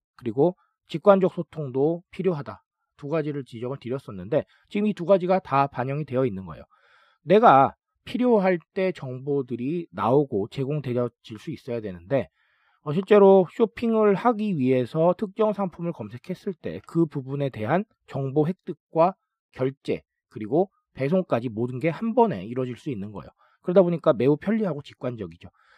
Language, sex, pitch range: Korean, male, 130-195 Hz